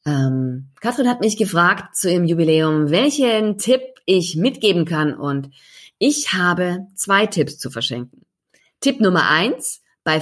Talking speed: 140 wpm